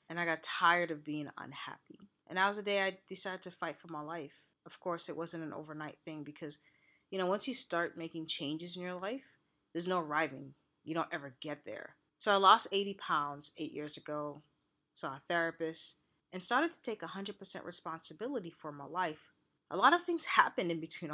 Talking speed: 205 wpm